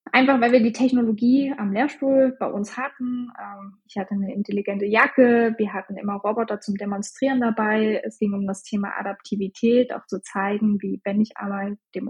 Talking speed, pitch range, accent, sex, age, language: 180 wpm, 210-255 Hz, German, female, 20-39, German